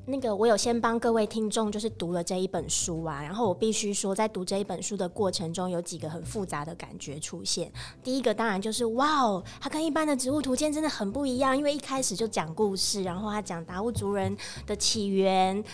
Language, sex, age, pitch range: Chinese, female, 20-39, 180-235 Hz